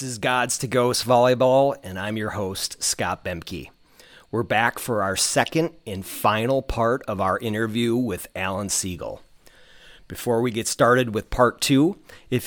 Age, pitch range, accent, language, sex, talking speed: 40-59, 100-120 Hz, American, English, male, 165 wpm